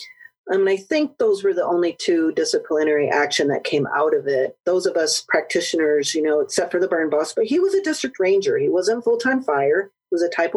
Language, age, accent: English, 40-59, American